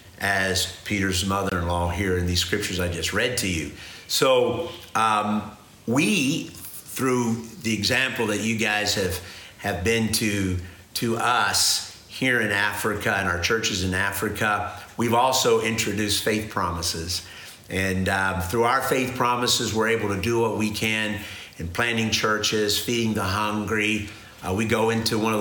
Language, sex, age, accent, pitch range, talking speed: English, male, 50-69, American, 95-115 Hz, 155 wpm